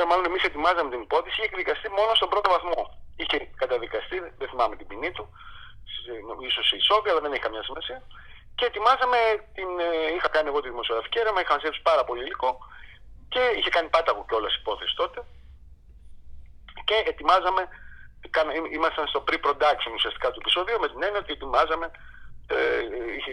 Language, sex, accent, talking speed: Greek, male, native, 160 wpm